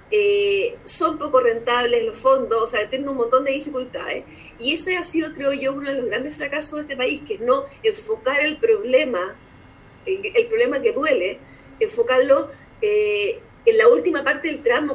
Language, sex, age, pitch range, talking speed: Spanish, female, 40-59, 275-460 Hz, 185 wpm